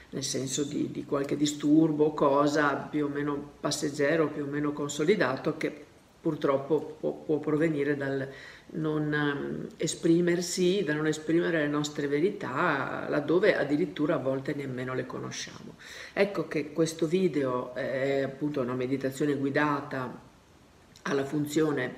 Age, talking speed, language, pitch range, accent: 50-69, 130 wpm, Italian, 135-155 Hz, native